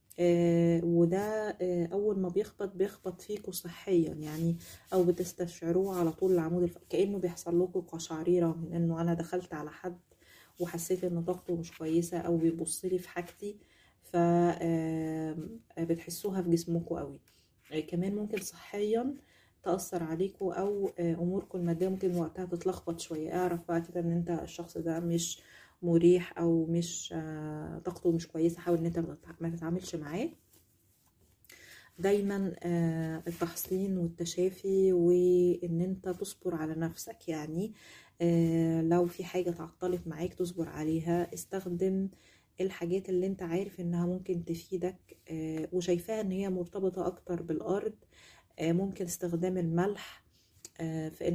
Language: Arabic